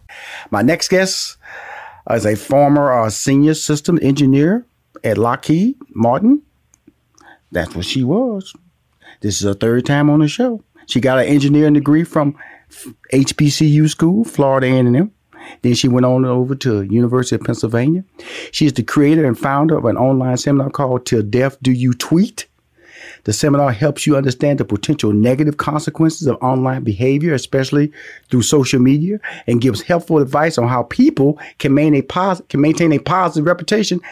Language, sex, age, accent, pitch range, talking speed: English, male, 40-59, American, 130-175 Hz, 165 wpm